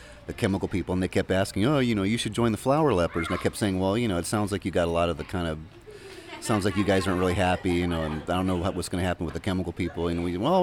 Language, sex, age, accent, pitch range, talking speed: English, male, 30-49, American, 90-110 Hz, 330 wpm